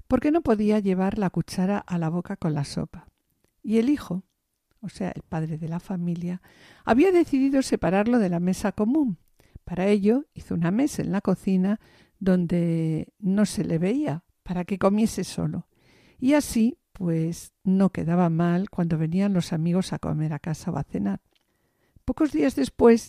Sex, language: female, Spanish